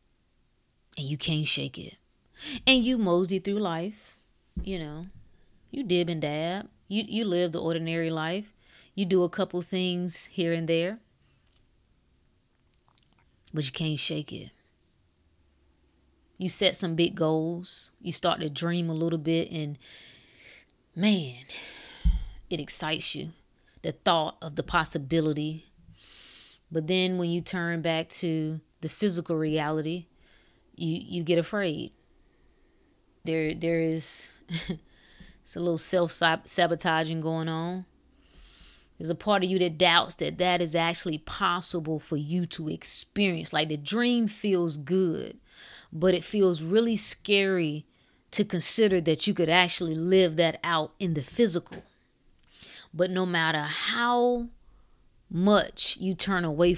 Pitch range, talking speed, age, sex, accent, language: 160-185 Hz, 135 wpm, 20-39, female, American, English